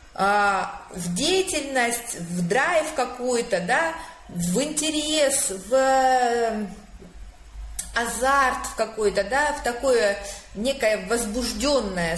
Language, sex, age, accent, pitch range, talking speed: Russian, female, 30-49, native, 205-280 Hz, 75 wpm